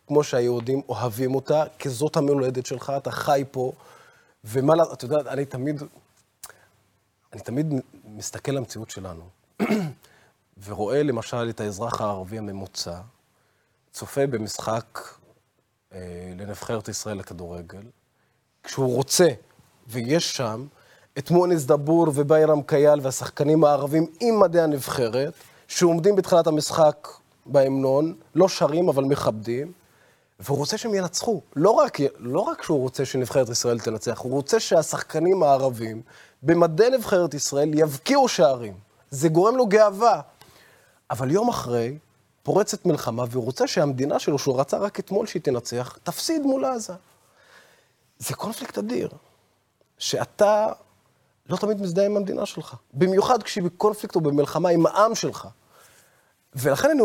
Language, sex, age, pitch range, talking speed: Hebrew, male, 30-49, 120-180 Hz, 125 wpm